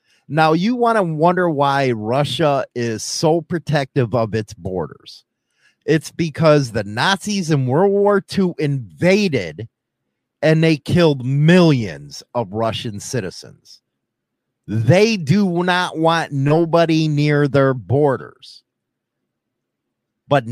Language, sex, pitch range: English, male, 130-185 Hz